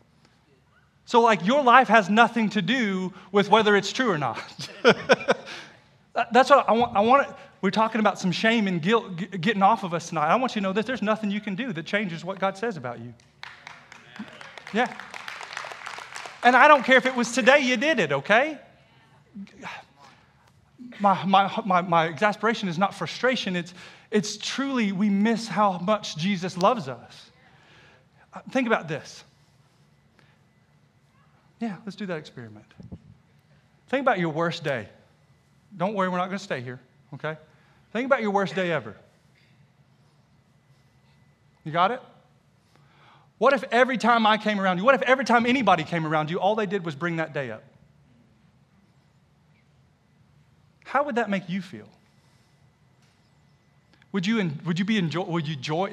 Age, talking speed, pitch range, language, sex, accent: 30-49, 160 wpm, 160-225 Hz, English, male, American